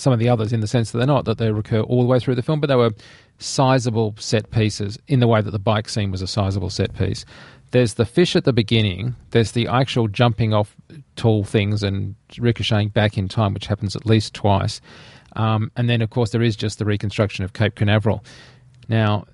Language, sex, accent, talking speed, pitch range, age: English, male, Australian, 230 wpm, 105-120 Hz, 40-59